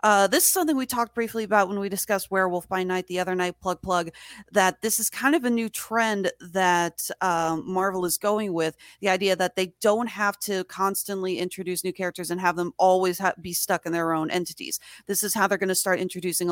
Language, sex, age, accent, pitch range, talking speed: English, female, 30-49, American, 175-210 Hz, 225 wpm